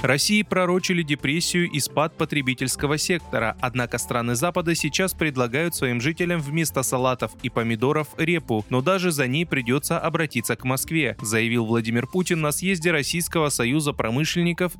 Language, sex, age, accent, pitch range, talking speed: Russian, male, 20-39, native, 125-170 Hz, 140 wpm